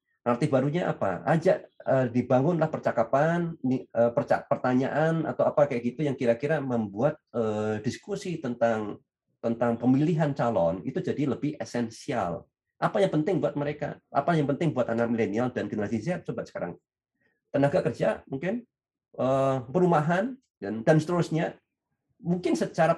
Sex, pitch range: male, 120-165 Hz